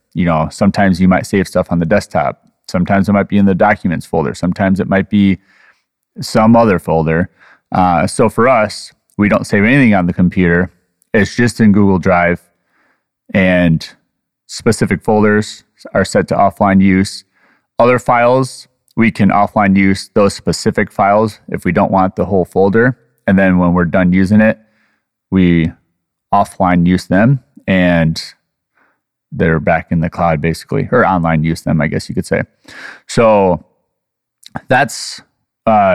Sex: male